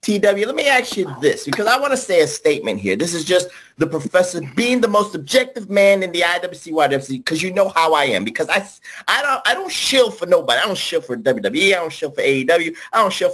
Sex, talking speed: male, 240 wpm